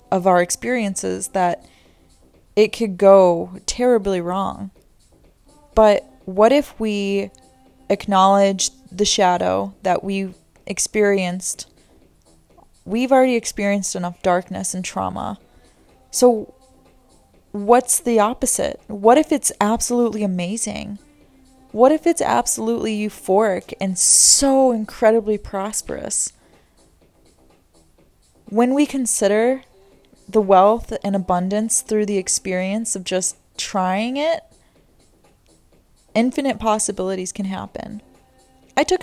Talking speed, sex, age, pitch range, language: 100 wpm, female, 20-39, 190-235 Hz, English